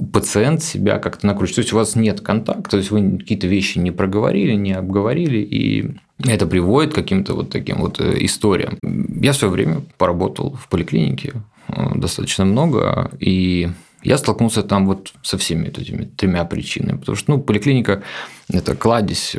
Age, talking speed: 30-49, 165 wpm